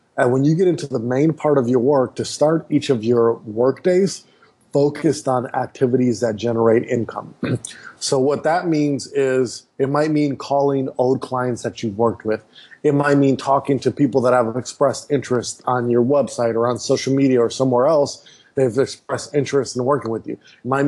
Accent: American